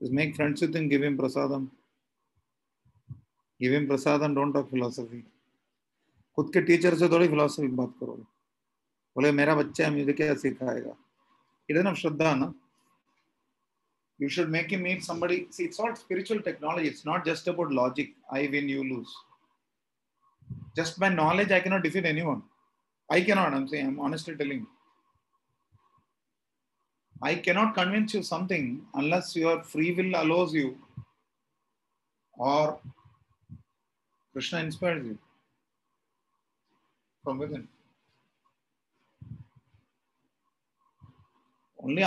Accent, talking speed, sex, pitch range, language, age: Indian, 95 wpm, male, 140-175 Hz, English, 30-49